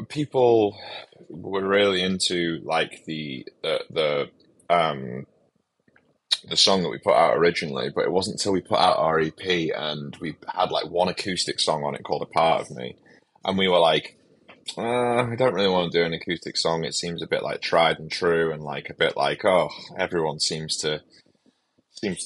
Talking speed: 190 wpm